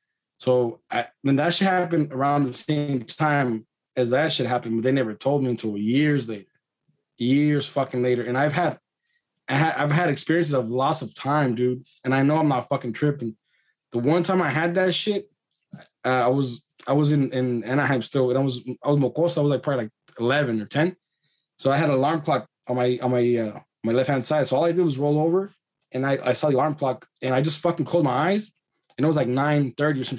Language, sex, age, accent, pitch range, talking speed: English, male, 20-39, American, 125-150 Hz, 235 wpm